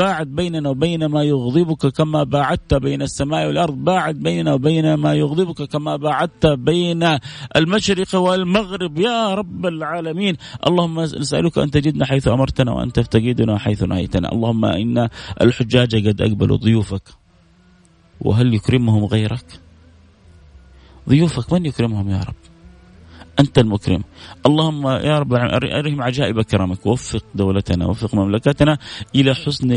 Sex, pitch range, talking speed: male, 105-145 Hz, 125 wpm